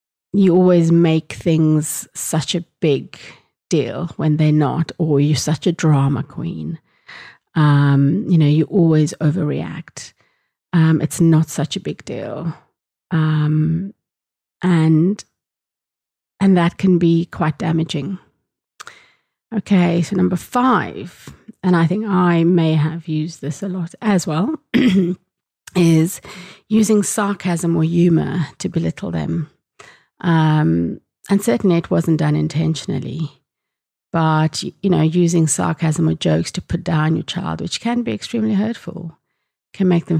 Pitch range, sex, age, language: 155-185 Hz, female, 30-49, English